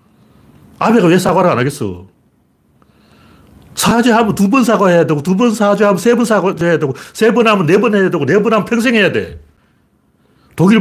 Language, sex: Korean, male